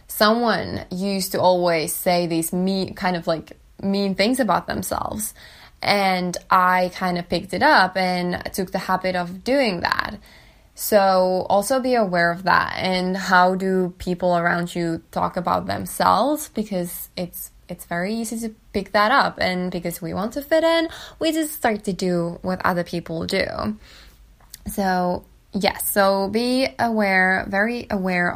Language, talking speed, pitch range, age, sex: English, 160 wpm, 180-225 Hz, 10-29, female